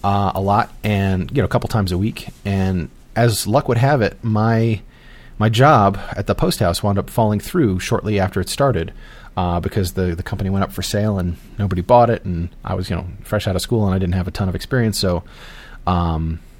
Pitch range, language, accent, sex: 90-115 Hz, English, American, male